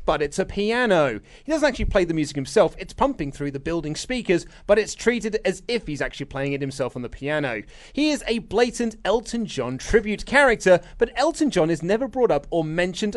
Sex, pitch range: male, 160-235 Hz